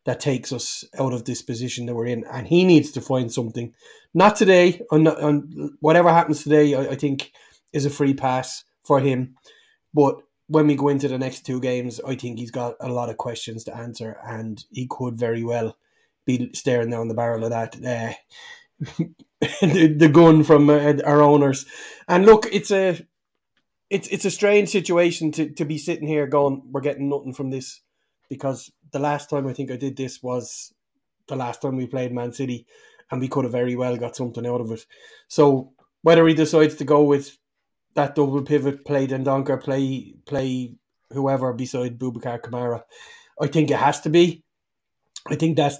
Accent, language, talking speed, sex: Irish, English, 195 wpm, male